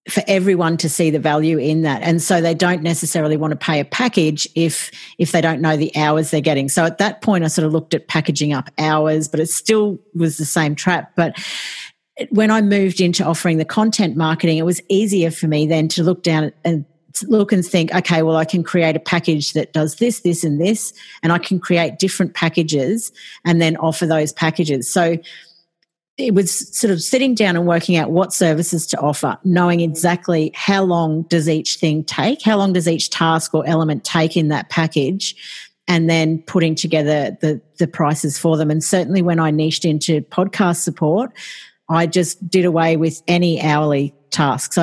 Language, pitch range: English, 155-180 Hz